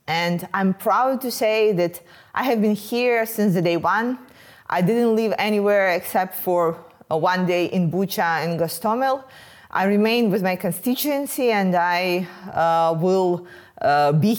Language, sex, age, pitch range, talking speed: English, female, 20-39, 180-235 Hz, 160 wpm